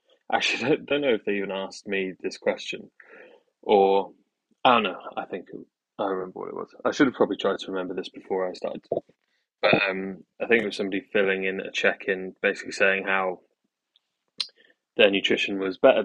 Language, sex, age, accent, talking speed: English, male, 20-39, British, 195 wpm